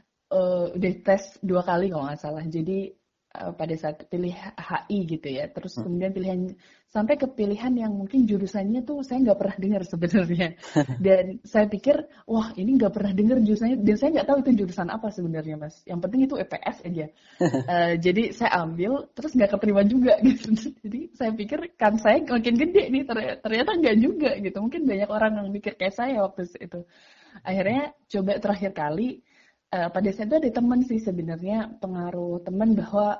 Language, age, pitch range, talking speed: Indonesian, 20-39, 180-230 Hz, 175 wpm